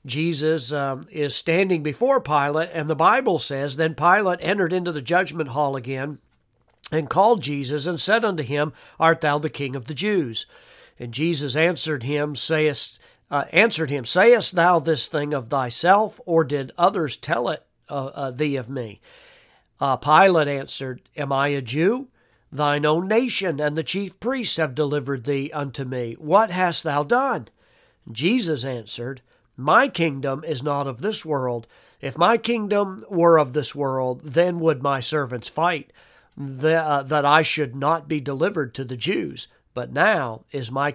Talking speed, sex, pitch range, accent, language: 160 wpm, male, 135-165 Hz, American, English